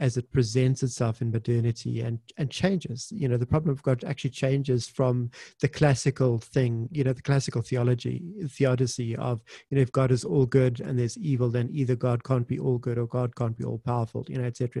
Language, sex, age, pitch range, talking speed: English, male, 30-49, 120-150 Hz, 225 wpm